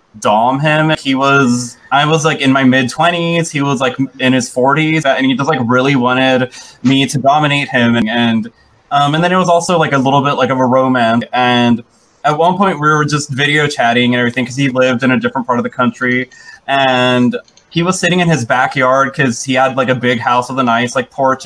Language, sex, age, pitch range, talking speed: English, male, 20-39, 130-160 Hz, 230 wpm